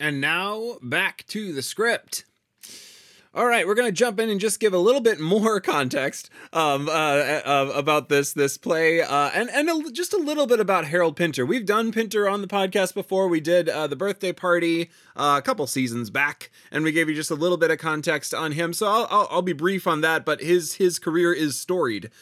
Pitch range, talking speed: 135-175 Hz, 225 wpm